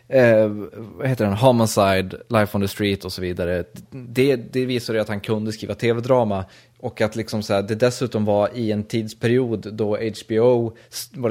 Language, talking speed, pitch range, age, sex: Swedish, 180 wpm, 105-120 Hz, 20-39, male